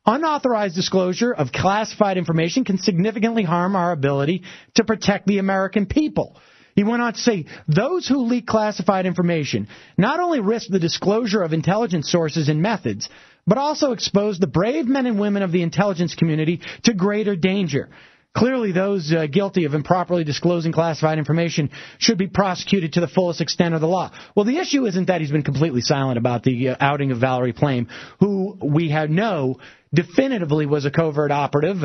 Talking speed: 175 wpm